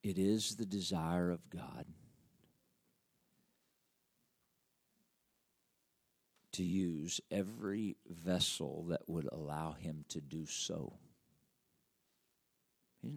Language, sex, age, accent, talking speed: English, male, 50-69, American, 80 wpm